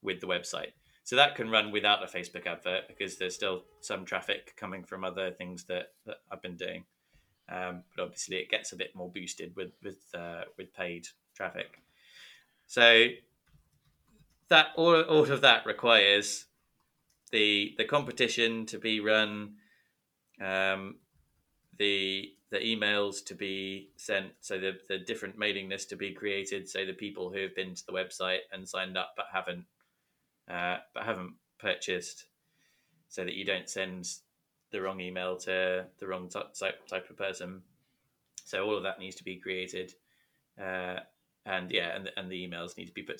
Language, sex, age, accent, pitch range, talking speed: English, male, 20-39, British, 95-105 Hz, 165 wpm